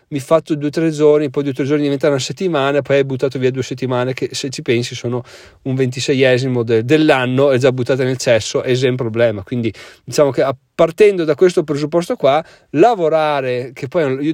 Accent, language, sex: native, Italian, male